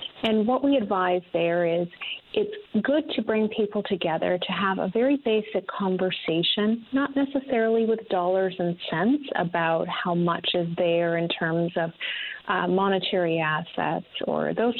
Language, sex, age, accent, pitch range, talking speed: English, female, 40-59, American, 170-210 Hz, 150 wpm